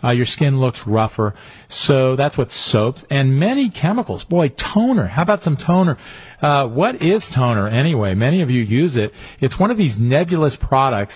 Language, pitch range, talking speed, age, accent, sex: English, 110-145 Hz, 185 wpm, 40-59, American, male